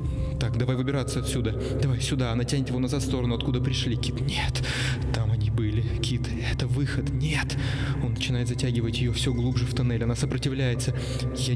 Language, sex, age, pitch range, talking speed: Russian, male, 20-39, 120-130 Hz, 175 wpm